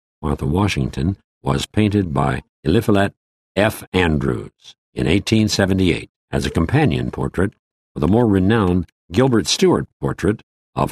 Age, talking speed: 60-79, 120 wpm